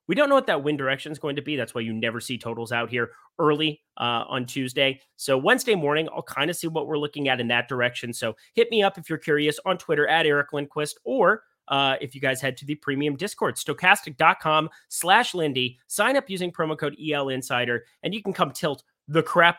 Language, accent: English, American